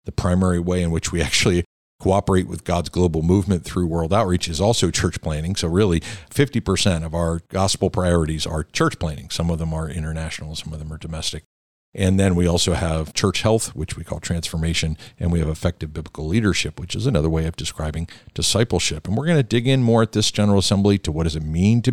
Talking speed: 220 wpm